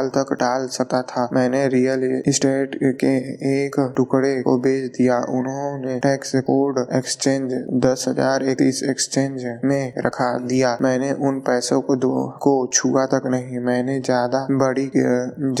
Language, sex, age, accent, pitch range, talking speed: Hindi, male, 20-39, native, 130-135 Hz, 90 wpm